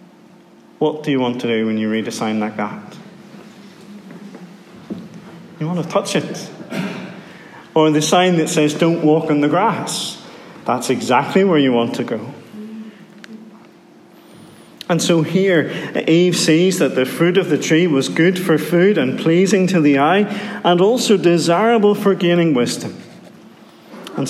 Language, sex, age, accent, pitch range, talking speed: English, male, 40-59, British, 145-195 Hz, 155 wpm